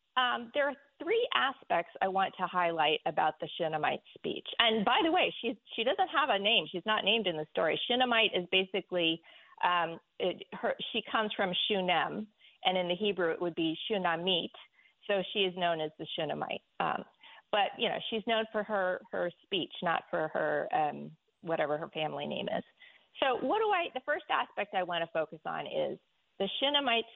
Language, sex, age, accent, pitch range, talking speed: English, female, 40-59, American, 170-225 Hz, 195 wpm